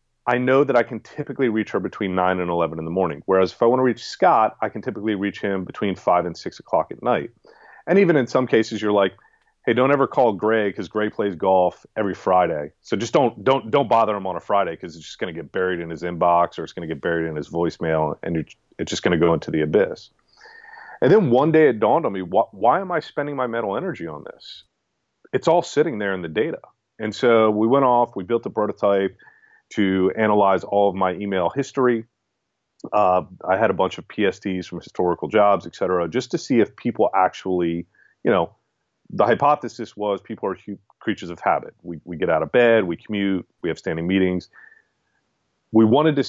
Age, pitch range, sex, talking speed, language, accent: 30-49, 90-115 Hz, male, 225 wpm, English, American